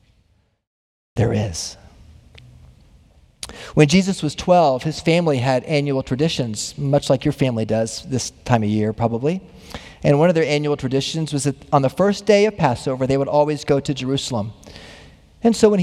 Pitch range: 140-225 Hz